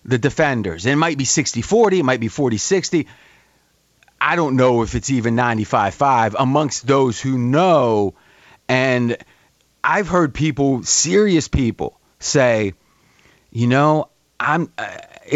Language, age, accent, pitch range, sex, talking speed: English, 30-49, American, 115-145 Hz, male, 125 wpm